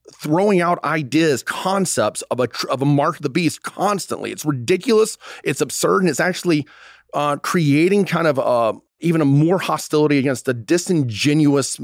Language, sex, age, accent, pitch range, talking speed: English, male, 30-49, American, 120-155 Hz, 165 wpm